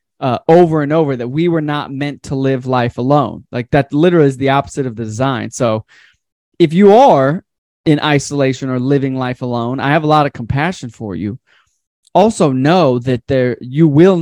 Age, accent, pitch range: 20-39, American, 125-145 Hz